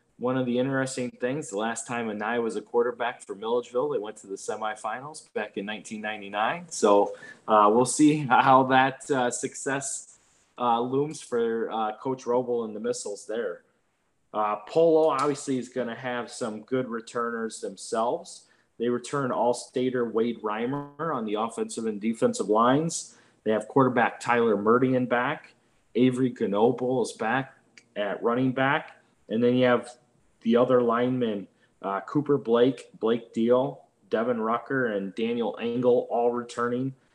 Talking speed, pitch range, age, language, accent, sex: 150 wpm, 110-135 Hz, 20-39, English, American, male